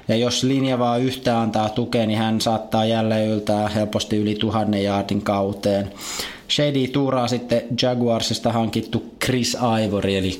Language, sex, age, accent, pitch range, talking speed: Finnish, male, 20-39, native, 110-125 Hz, 140 wpm